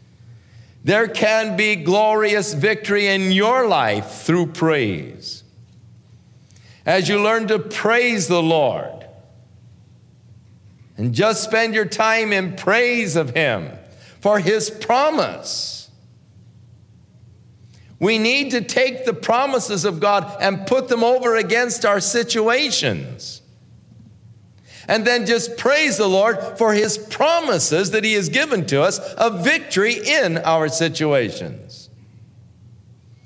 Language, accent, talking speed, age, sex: English, American, 115 wpm, 50-69, male